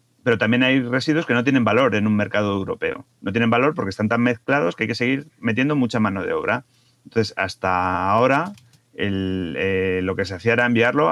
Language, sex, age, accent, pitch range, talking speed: Spanish, male, 30-49, Spanish, 100-125 Hz, 205 wpm